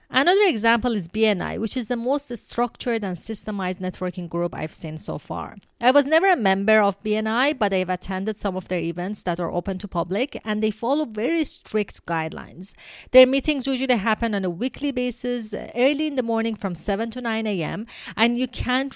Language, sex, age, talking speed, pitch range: English, female, 30-49, 195 wpm, 195-260 Hz